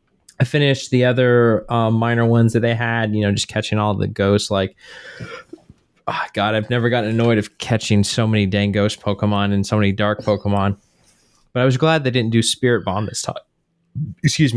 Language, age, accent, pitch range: English, 20-39, American, 105-125 Hz